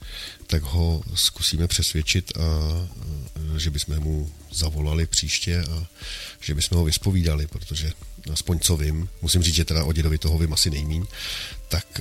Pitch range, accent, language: 80-95 Hz, native, Czech